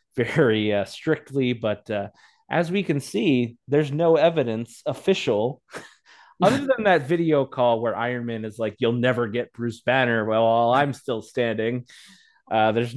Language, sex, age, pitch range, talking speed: English, male, 30-49, 100-130 Hz, 155 wpm